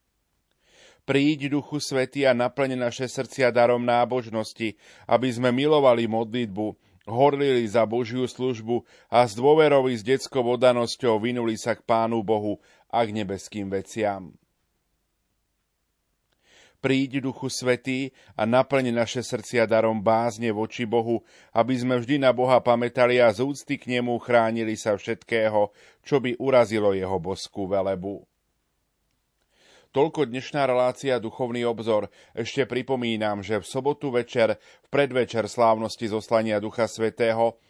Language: Slovak